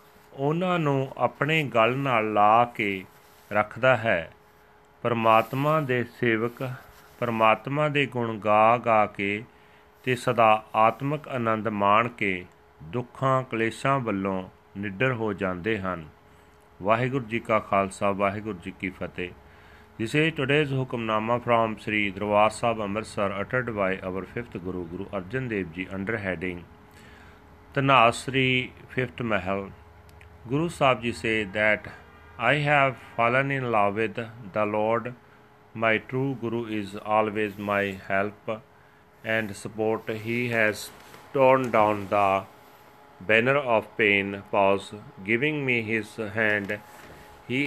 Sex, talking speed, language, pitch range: male, 125 wpm, Punjabi, 100-125 Hz